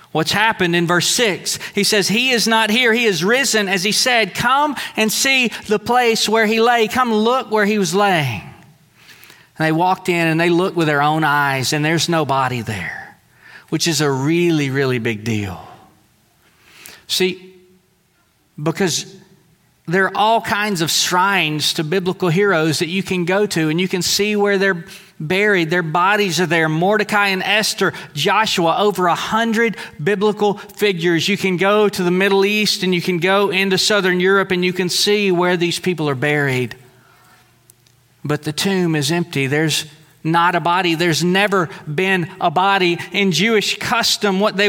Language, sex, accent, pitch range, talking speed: English, male, American, 165-200 Hz, 175 wpm